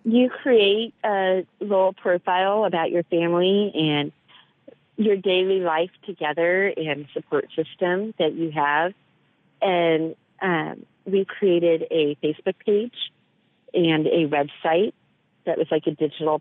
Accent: American